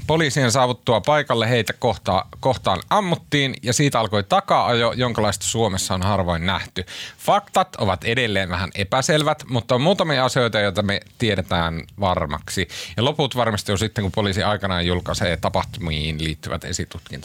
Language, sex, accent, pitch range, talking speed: Finnish, male, native, 90-125 Hz, 135 wpm